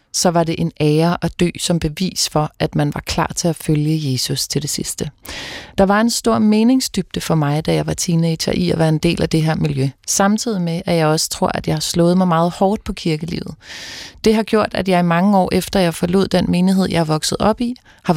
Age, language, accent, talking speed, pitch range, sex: 30-49, Danish, native, 250 wpm, 170-205 Hz, female